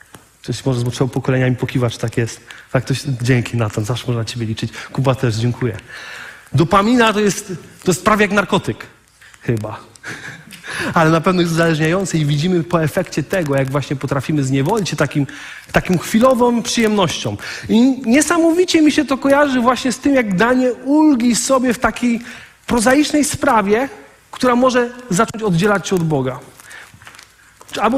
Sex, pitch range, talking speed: male, 150-240 Hz, 160 wpm